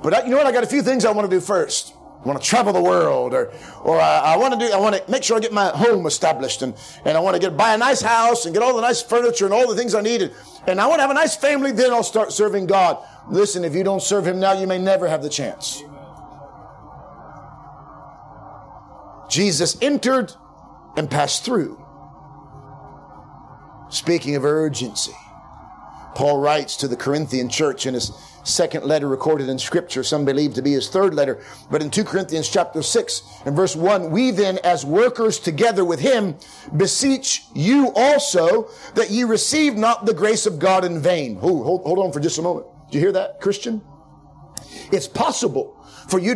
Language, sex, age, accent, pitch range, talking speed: English, male, 40-59, American, 155-235 Hz, 210 wpm